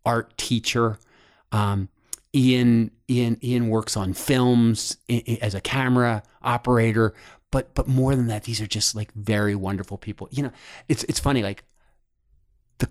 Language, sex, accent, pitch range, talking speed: English, male, American, 95-115 Hz, 150 wpm